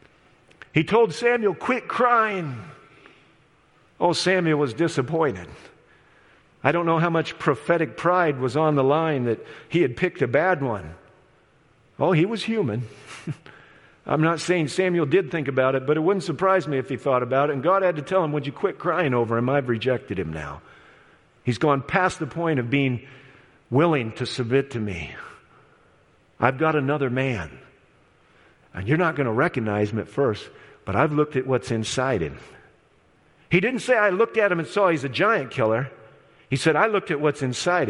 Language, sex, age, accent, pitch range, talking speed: English, male, 50-69, American, 130-180 Hz, 185 wpm